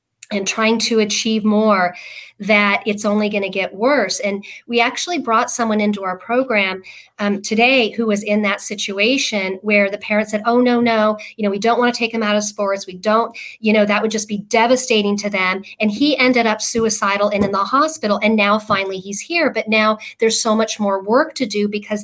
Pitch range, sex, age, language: 200-225 Hz, female, 40-59, English